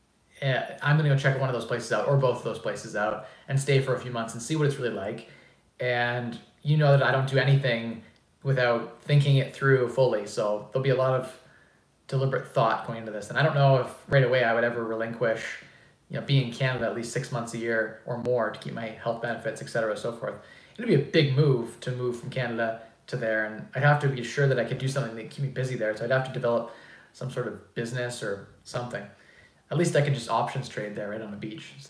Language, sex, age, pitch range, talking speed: English, male, 20-39, 115-140 Hz, 255 wpm